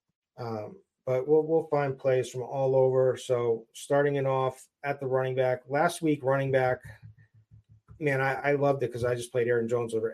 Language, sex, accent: English, male, American